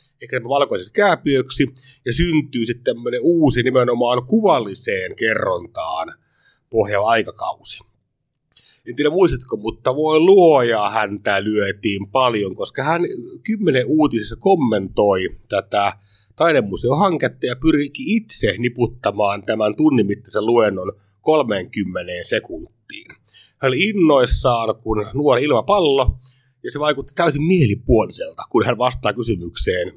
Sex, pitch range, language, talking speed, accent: male, 110-150 Hz, Finnish, 105 wpm, native